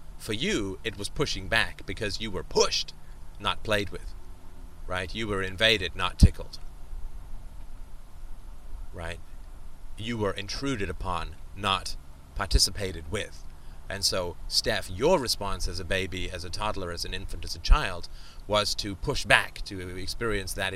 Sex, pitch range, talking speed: male, 80-105 Hz, 145 wpm